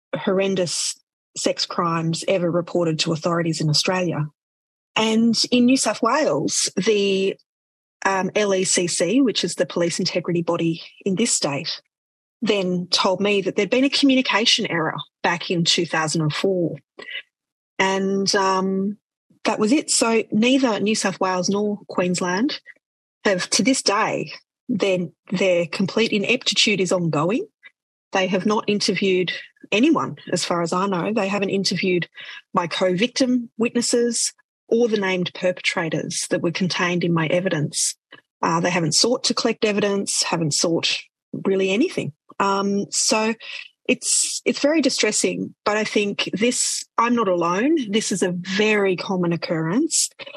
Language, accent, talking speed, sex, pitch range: English, Australian, 140 wpm, female, 180-225 Hz